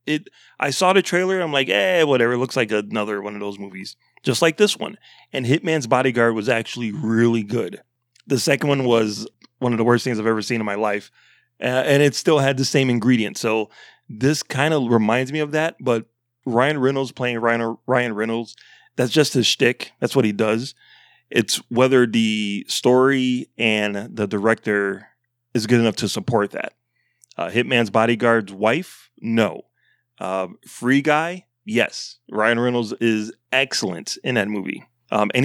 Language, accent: English, American